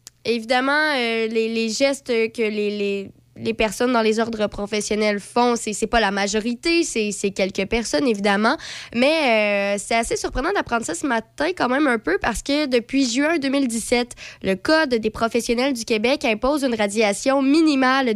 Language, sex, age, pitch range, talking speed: French, female, 20-39, 215-265 Hz, 180 wpm